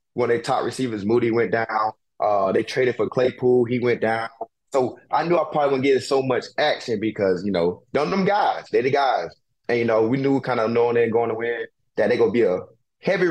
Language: English